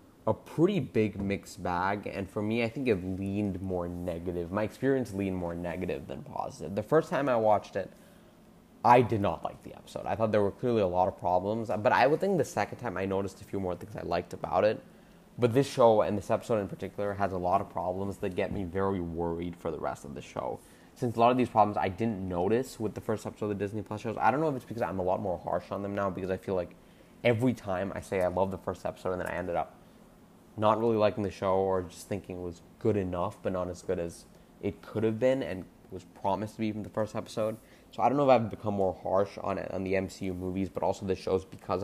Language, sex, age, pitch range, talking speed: English, male, 20-39, 95-110 Hz, 260 wpm